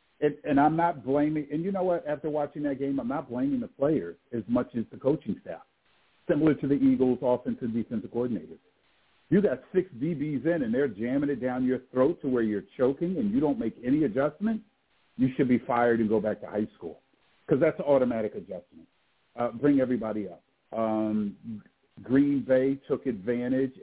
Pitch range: 115-150 Hz